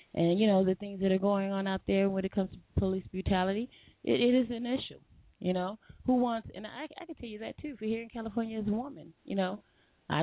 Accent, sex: American, female